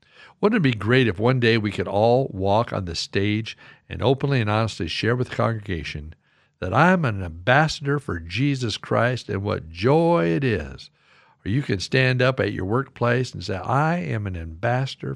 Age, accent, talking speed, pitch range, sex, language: 60-79, American, 195 wpm, 110-155 Hz, male, English